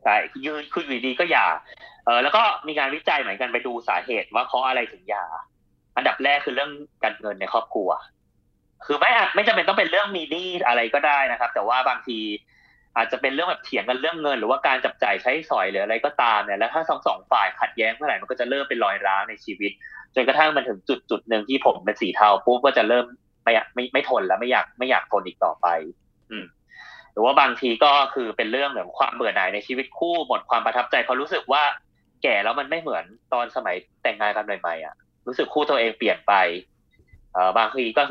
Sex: male